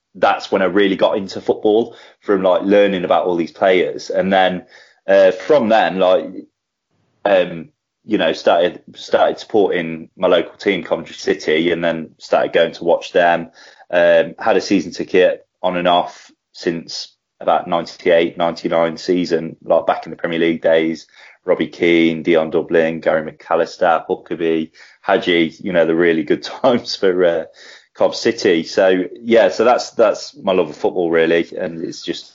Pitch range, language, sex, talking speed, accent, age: 85-100 Hz, English, male, 170 wpm, British, 20-39